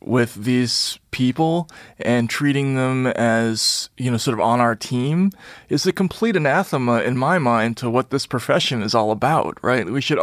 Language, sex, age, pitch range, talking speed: English, male, 30-49, 115-145 Hz, 180 wpm